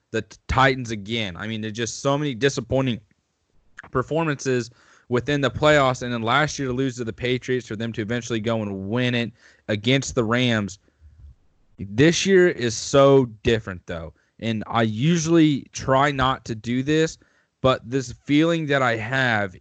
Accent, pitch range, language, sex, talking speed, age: American, 110-130 Hz, English, male, 165 wpm, 20-39